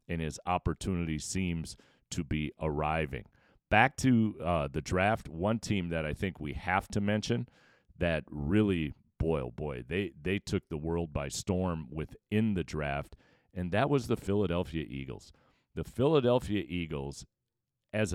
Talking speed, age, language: 150 wpm, 40-59, English